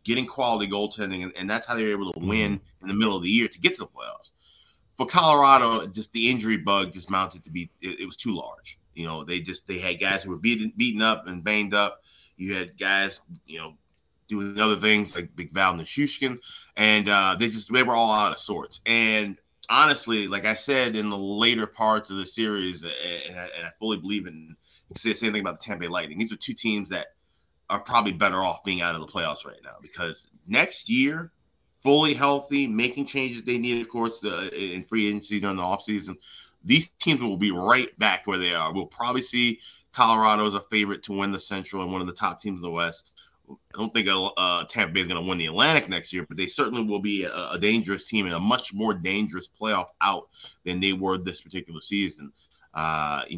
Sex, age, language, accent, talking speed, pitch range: male, 30-49, English, American, 230 wpm, 90-115 Hz